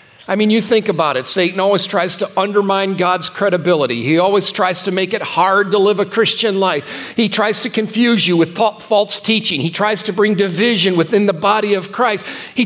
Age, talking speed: 50-69, 210 wpm